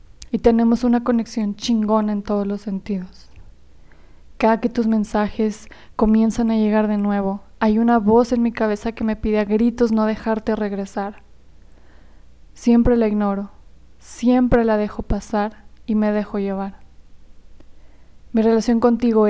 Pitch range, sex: 205-230 Hz, female